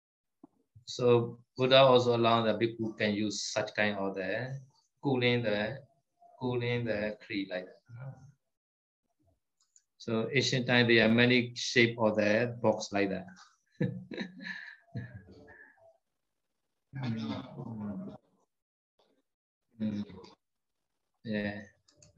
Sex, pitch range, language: male, 110-135 Hz, Vietnamese